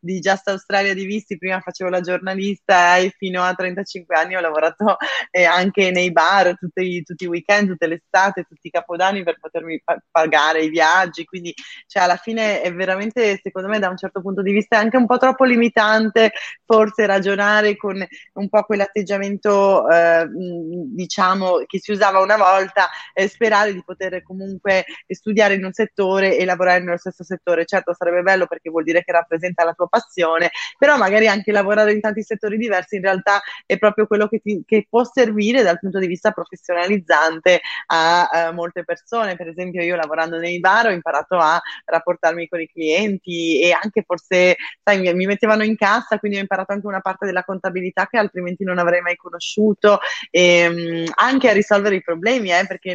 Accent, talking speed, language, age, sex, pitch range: native, 190 wpm, Italian, 20-39, female, 175-210 Hz